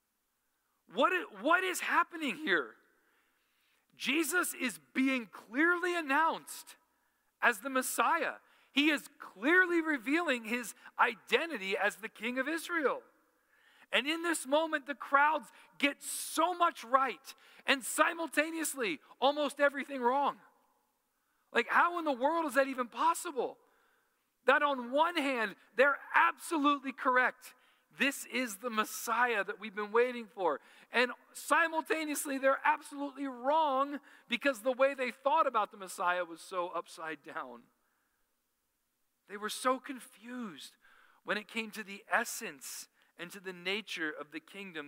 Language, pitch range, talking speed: English, 200-300 Hz, 130 wpm